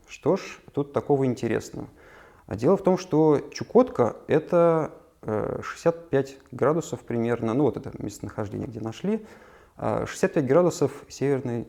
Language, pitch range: Russian, 110-140 Hz